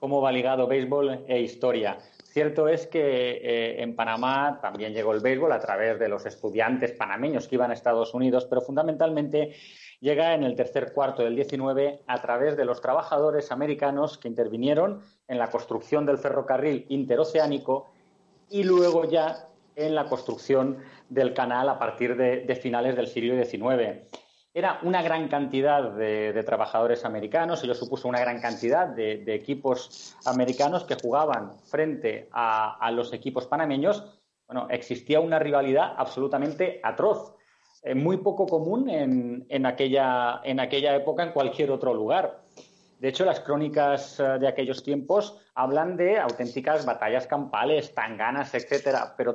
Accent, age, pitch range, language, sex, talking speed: Spanish, 30-49, 125-155 Hz, Spanish, male, 150 wpm